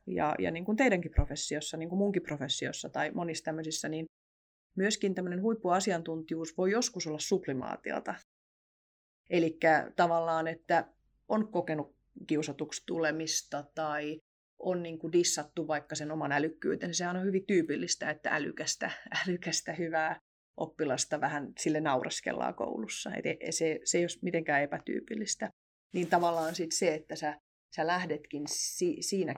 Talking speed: 135 wpm